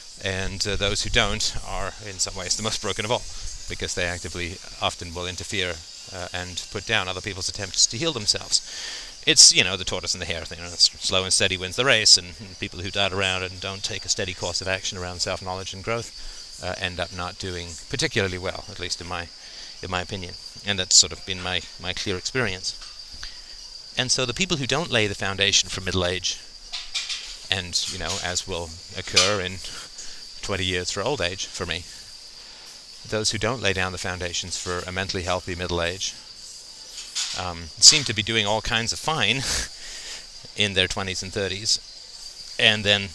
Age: 40-59